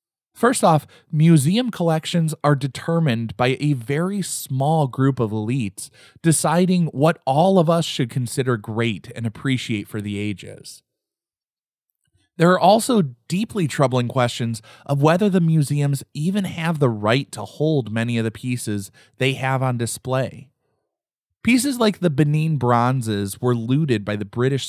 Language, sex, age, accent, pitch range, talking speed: English, male, 20-39, American, 120-165 Hz, 145 wpm